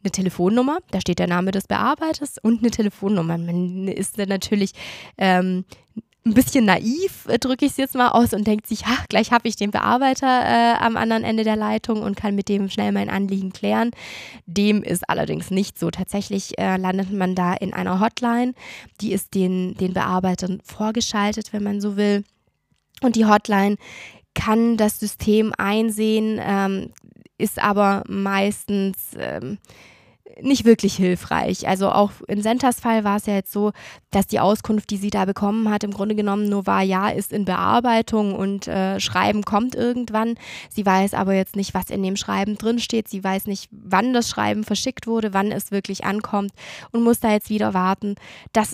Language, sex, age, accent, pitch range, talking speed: German, female, 20-39, German, 190-220 Hz, 180 wpm